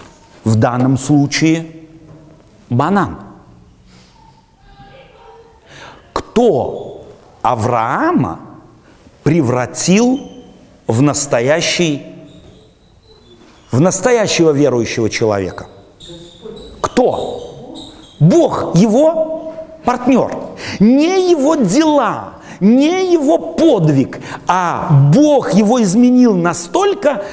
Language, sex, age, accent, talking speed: Russian, male, 50-69, native, 60 wpm